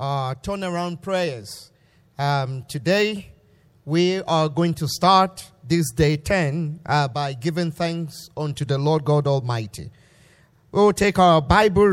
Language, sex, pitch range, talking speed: English, male, 145-195 Hz, 135 wpm